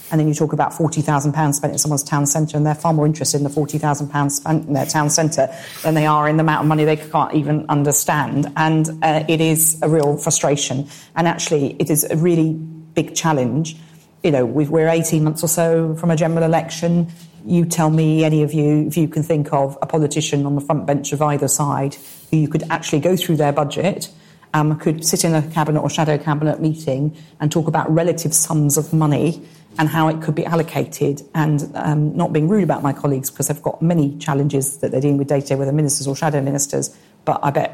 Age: 40-59